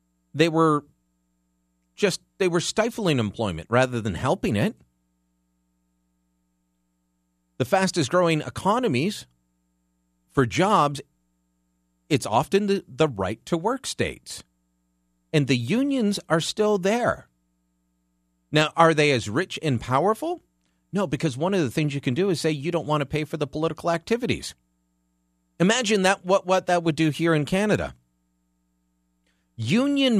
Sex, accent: male, American